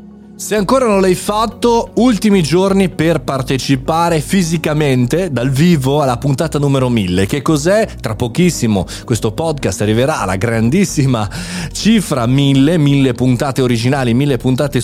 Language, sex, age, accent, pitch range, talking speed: Italian, male, 30-49, native, 115-180 Hz, 135 wpm